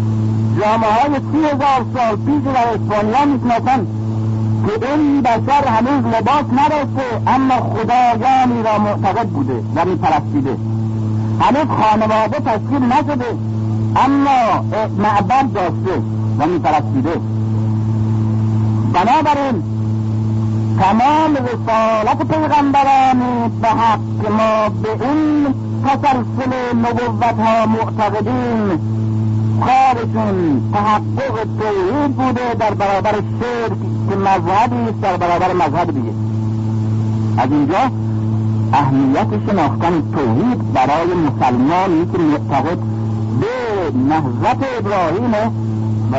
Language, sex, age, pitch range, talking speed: Persian, male, 60-79, 110-170 Hz, 85 wpm